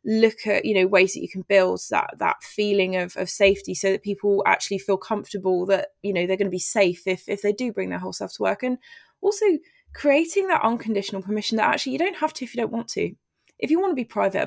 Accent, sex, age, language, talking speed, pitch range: British, female, 20-39, English, 255 wpm, 195-250 Hz